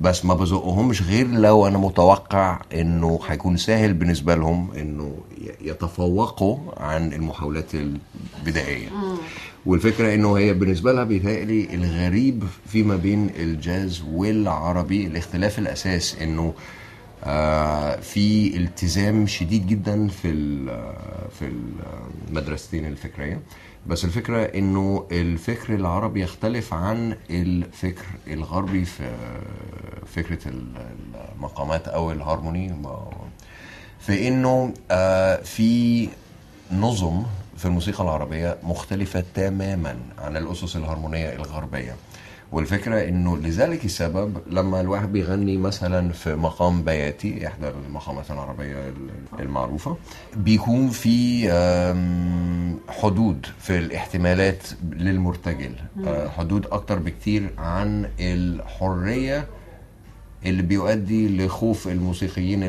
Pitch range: 80-100 Hz